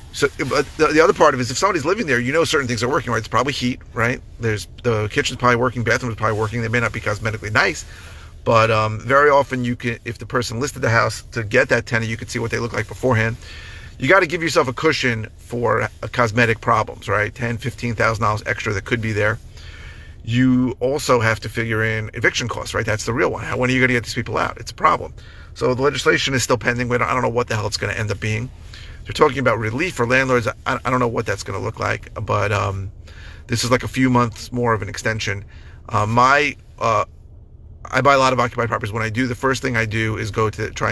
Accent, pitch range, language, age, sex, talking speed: American, 105-125 Hz, English, 40-59, male, 250 wpm